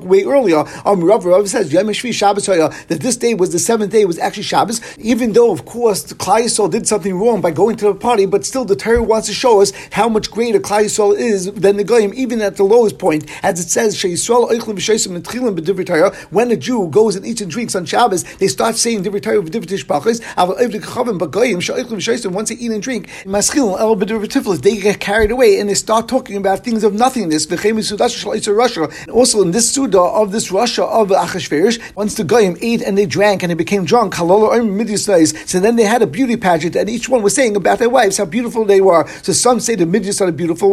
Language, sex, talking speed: English, male, 200 wpm